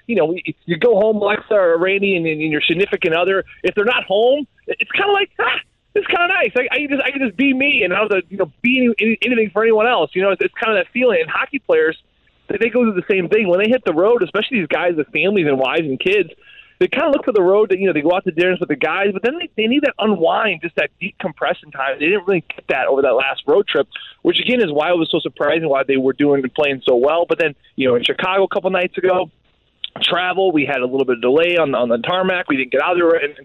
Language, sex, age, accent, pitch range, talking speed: English, male, 30-49, American, 150-225 Hz, 290 wpm